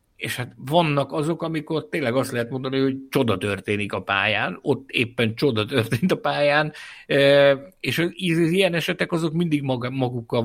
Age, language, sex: 60-79, Hungarian, male